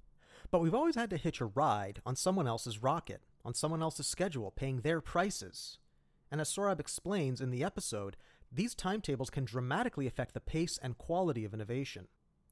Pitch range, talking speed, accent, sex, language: 120-155 Hz, 175 wpm, American, male, English